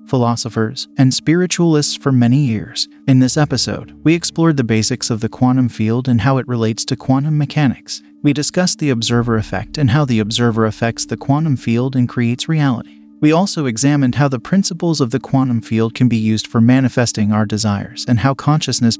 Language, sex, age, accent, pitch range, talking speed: English, male, 30-49, American, 115-140 Hz, 190 wpm